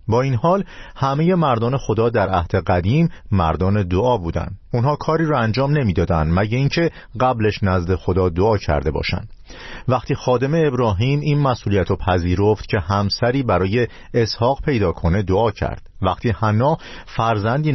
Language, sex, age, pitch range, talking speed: Persian, male, 50-69, 90-130 Hz, 150 wpm